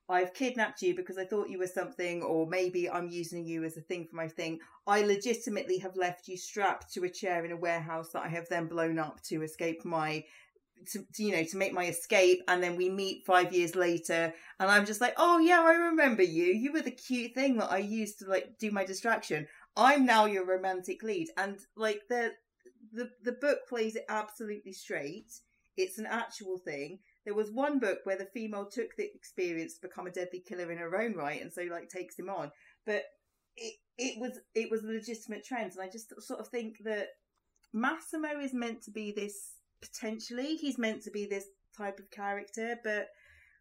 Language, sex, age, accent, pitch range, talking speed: English, female, 40-59, British, 180-235 Hz, 210 wpm